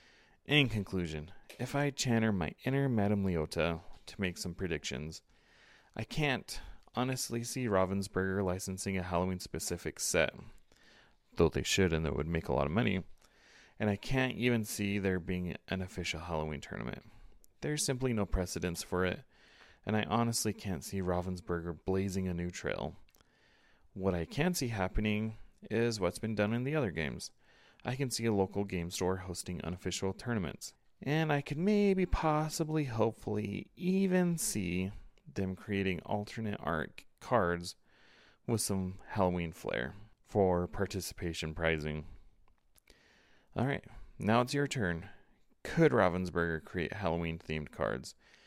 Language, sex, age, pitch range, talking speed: English, male, 30-49, 90-120 Hz, 140 wpm